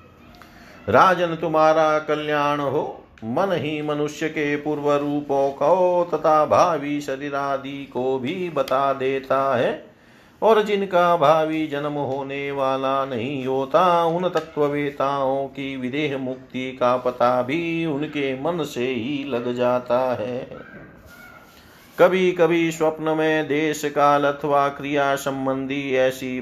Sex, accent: male, native